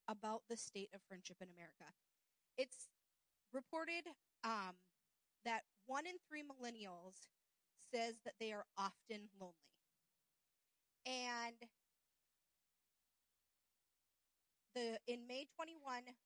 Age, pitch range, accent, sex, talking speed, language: 30-49, 185-235 Hz, American, female, 100 wpm, English